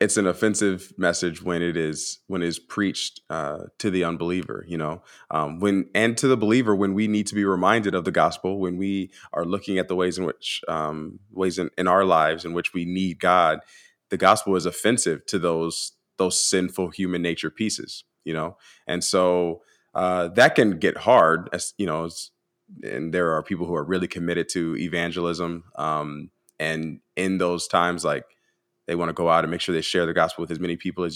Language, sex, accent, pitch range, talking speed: English, male, American, 85-95 Hz, 210 wpm